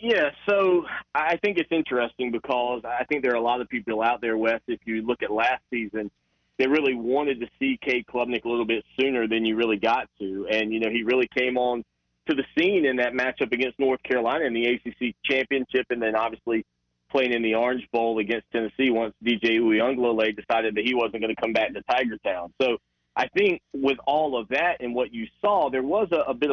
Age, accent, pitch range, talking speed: 40-59, American, 115-130 Hz, 225 wpm